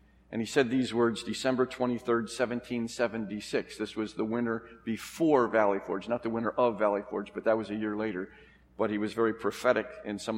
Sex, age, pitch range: male, 50-69, 110-150 Hz